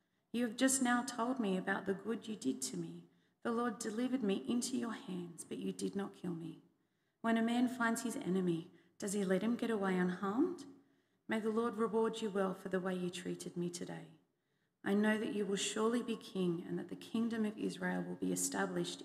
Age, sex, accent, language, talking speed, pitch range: 40-59, female, Australian, English, 215 wpm, 170-220 Hz